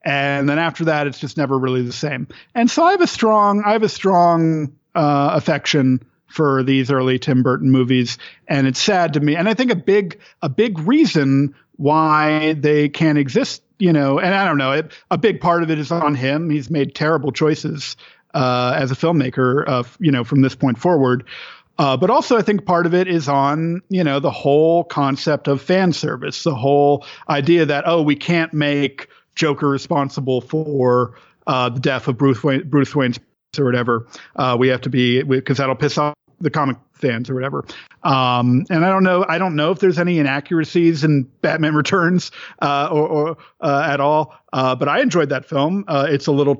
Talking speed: 205 wpm